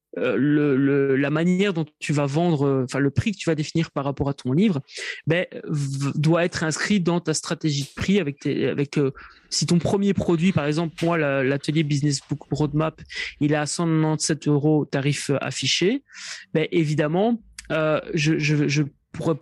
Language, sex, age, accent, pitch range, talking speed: French, male, 30-49, French, 145-175 Hz, 185 wpm